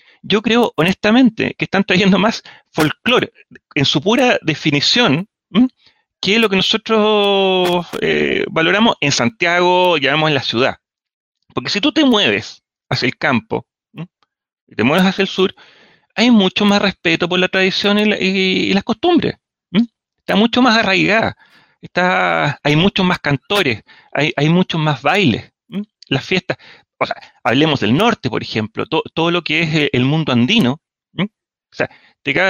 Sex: male